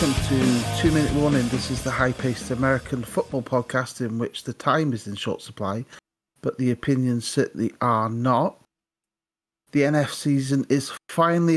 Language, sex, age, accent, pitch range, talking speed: English, male, 40-59, British, 115-135 Hz, 160 wpm